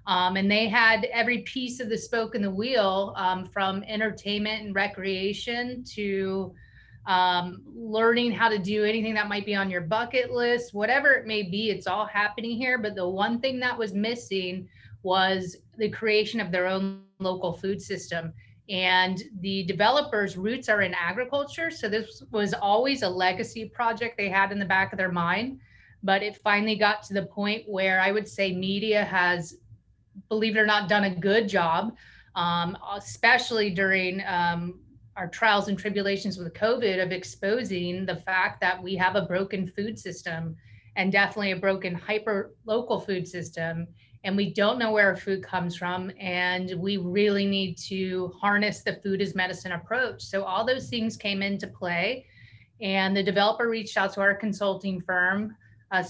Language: English